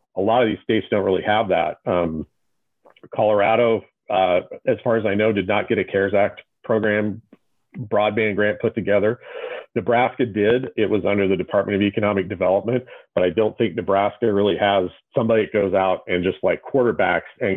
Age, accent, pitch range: 40-59, American, 95-110 Hz